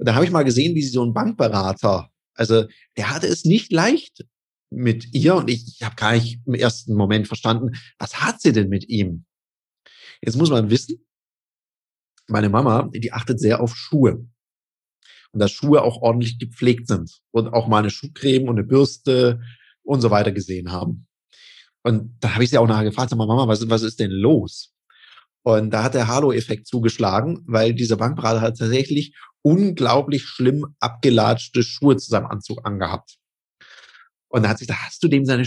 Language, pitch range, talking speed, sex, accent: German, 110-140 Hz, 185 wpm, male, German